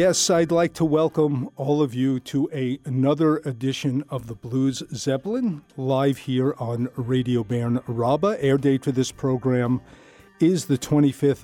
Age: 50-69